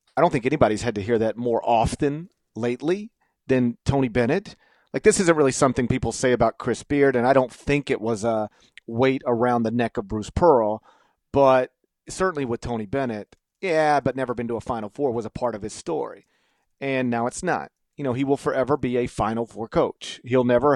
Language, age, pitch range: English, 40-59, 115-145 Hz